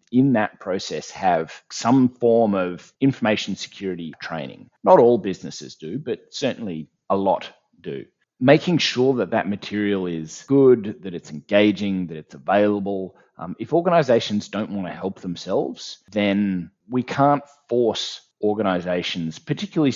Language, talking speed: English, 140 wpm